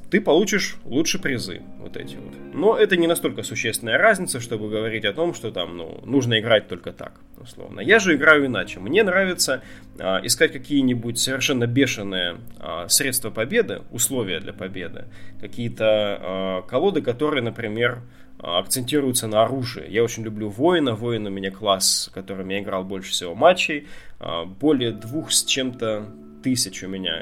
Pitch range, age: 95-130 Hz, 20-39